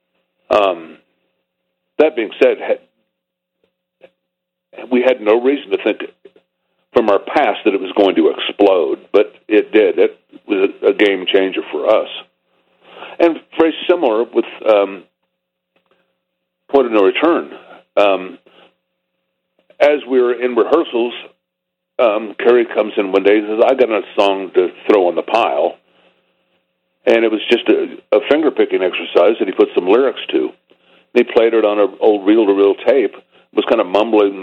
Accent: American